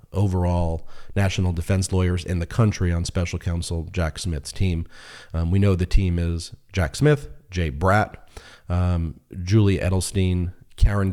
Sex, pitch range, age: male, 85-100 Hz, 40-59